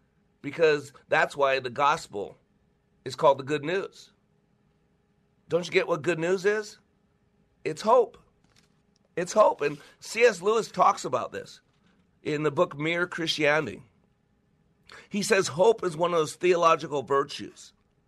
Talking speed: 135 wpm